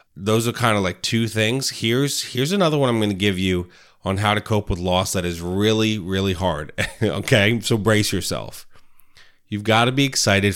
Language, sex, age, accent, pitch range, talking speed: English, male, 30-49, American, 100-125 Hz, 205 wpm